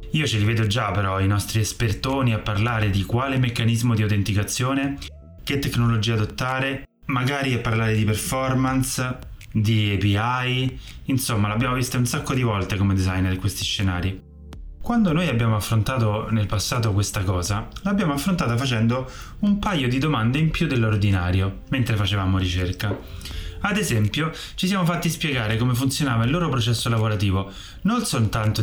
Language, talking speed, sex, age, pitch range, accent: Italian, 155 wpm, male, 20-39, 100-125 Hz, native